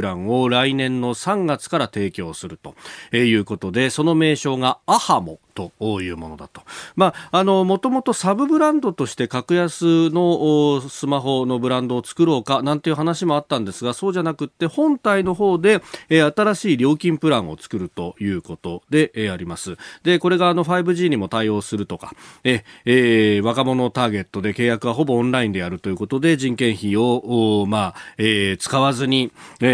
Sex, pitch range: male, 105-155 Hz